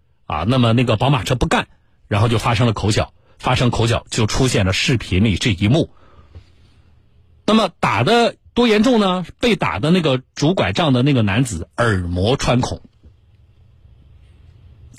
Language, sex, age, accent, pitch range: Chinese, male, 50-69, native, 95-120 Hz